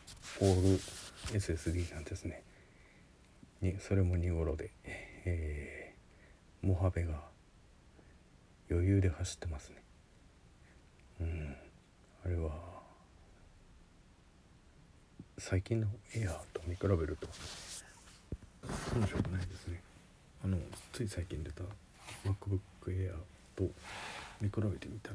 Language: Japanese